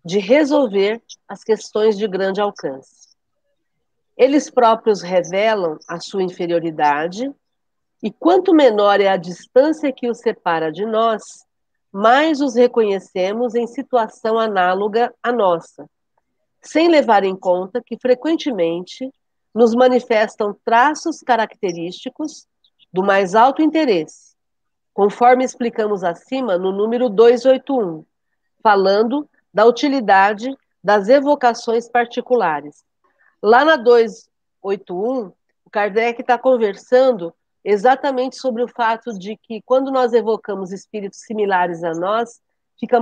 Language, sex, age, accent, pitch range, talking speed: Portuguese, female, 50-69, Brazilian, 200-255 Hz, 110 wpm